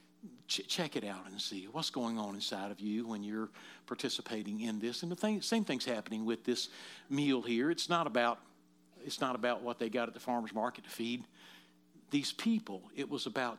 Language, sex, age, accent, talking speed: English, male, 60-79, American, 205 wpm